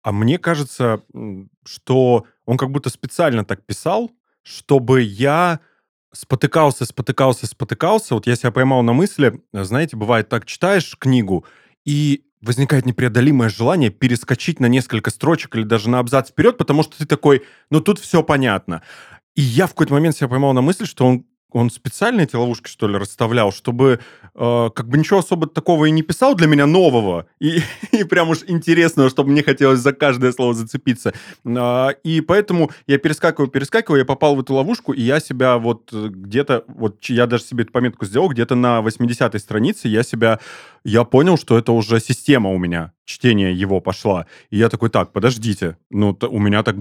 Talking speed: 180 wpm